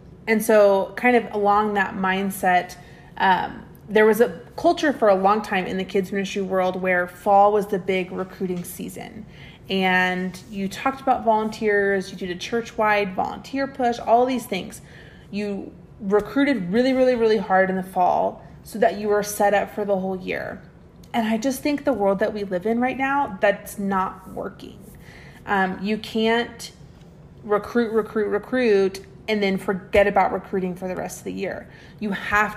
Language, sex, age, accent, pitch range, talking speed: English, female, 30-49, American, 190-220 Hz, 175 wpm